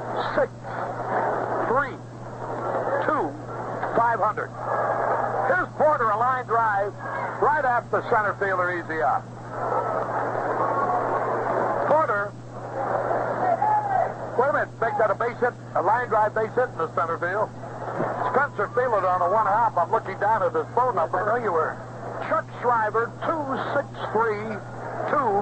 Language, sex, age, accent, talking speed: English, male, 60-79, American, 135 wpm